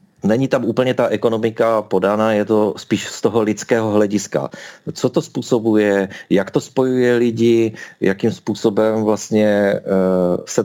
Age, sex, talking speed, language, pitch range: 40-59, male, 135 wpm, Czech, 100-120 Hz